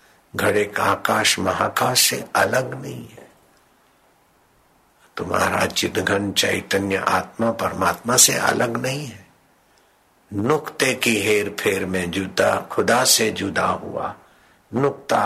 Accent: native